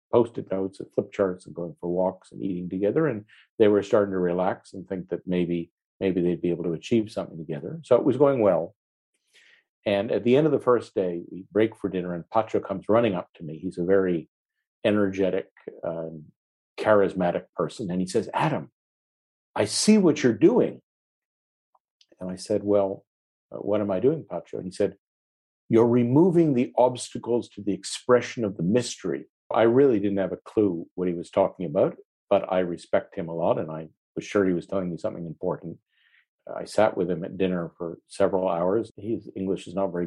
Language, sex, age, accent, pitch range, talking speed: English, male, 50-69, American, 90-105 Hz, 200 wpm